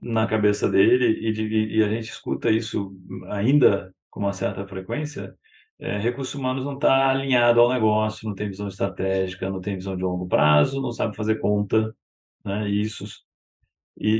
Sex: male